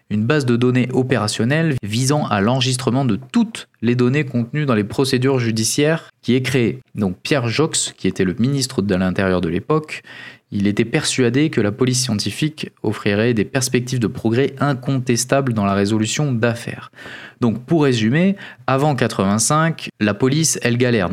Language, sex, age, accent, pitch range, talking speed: French, male, 20-39, French, 105-135 Hz, 160 wpm